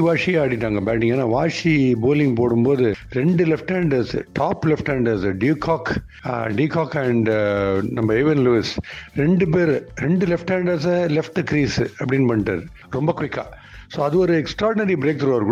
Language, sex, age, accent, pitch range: Tamil, male, 60-79, native, 120-170 Hz